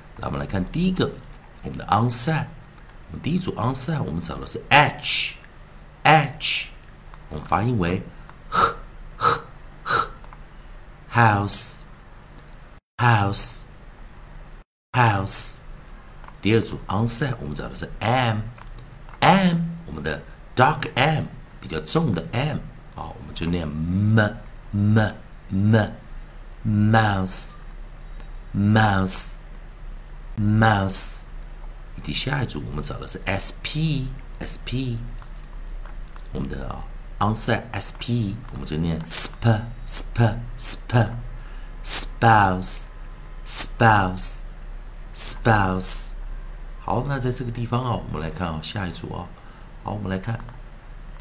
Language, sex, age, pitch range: Chinese, male, 60-79, 100-130 Hz